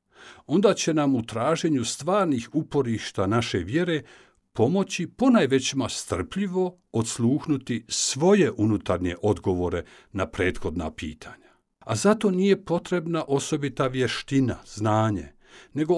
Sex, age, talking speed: male, 60-79, 100 wpm